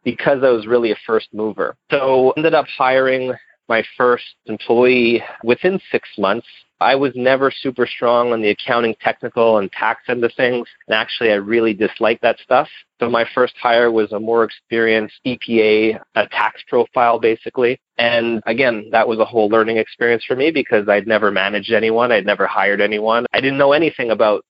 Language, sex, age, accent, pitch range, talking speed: English, male, 30-49, American, 110-130 Hz, 185 wpm